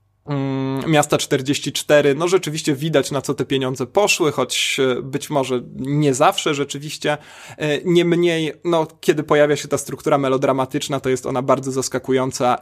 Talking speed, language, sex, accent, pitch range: 140 wpm, Polish, male, native, 135-170 Hz